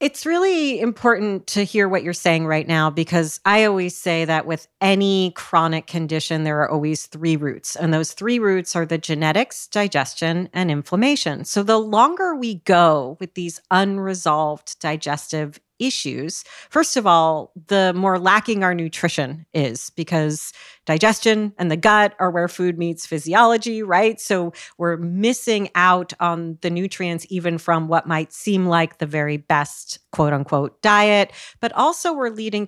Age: 40-59